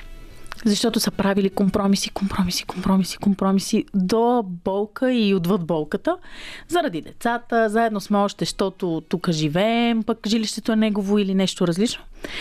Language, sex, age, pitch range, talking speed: Bulgarian, female, 30-49, 180-230 Hz, 130 wpm